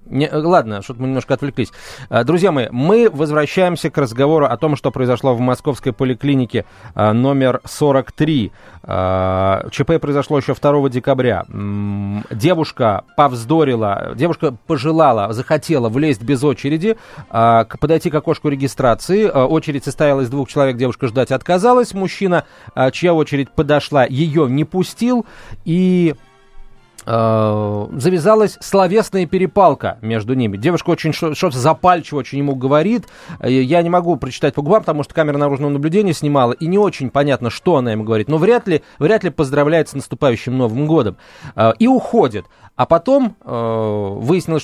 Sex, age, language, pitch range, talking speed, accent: male, 30-49, Russian, 125-165 Hz, 135 wpm, native